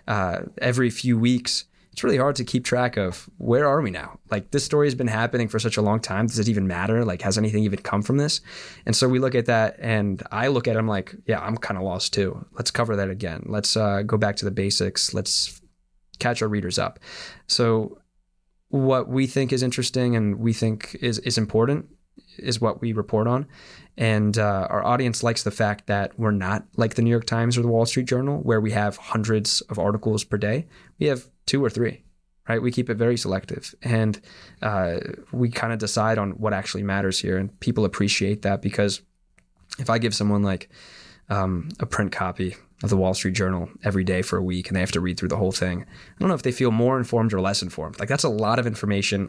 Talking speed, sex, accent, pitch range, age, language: 230 wpm, male, American, 100-120 Hz, 20-39, English